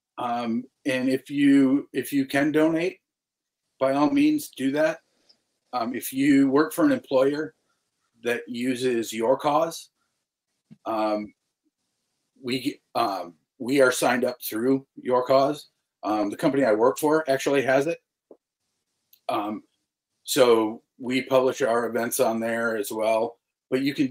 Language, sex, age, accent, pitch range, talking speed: English, male, 40-59, American, 115-140 Hz, 140 wpm